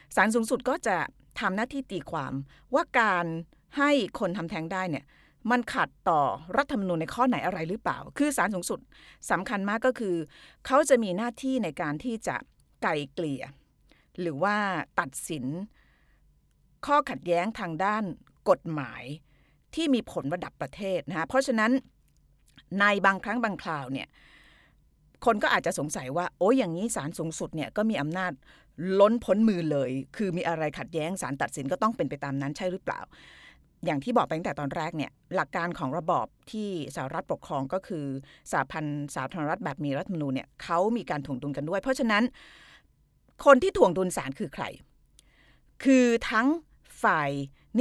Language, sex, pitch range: Thai, female, 150-230 Hz